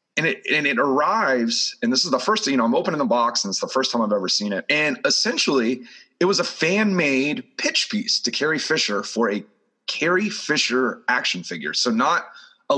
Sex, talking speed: male, 220 wpm